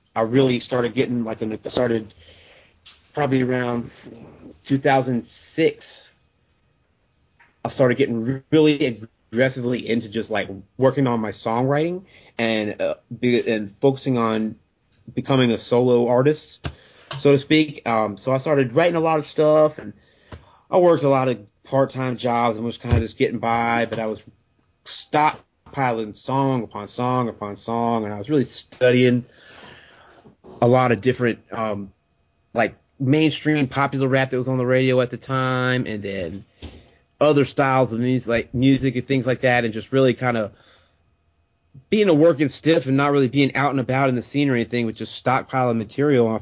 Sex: male